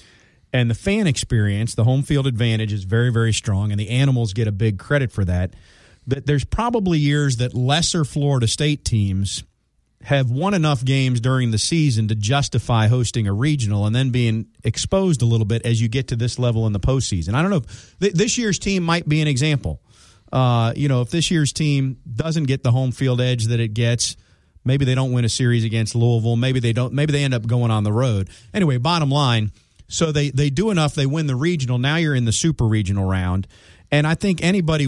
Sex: male